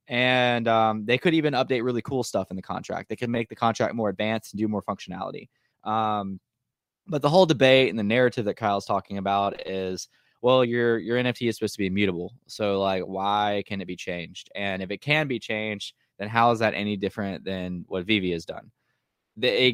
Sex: male